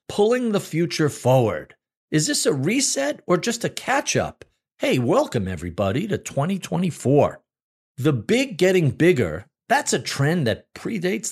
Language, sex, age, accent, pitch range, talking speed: English, male, 50-69, American, 130-195 Hz, 140 wpm